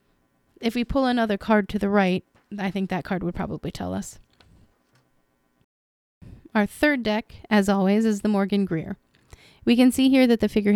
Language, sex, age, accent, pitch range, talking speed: English, female, 20-39, American, 175-220 Hz, 180 wpm